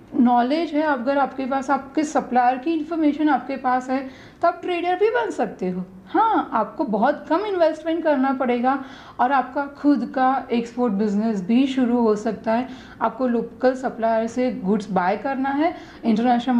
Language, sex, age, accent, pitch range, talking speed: Hindi, female, 40-59, native, 225-285 Hz, 165 wpm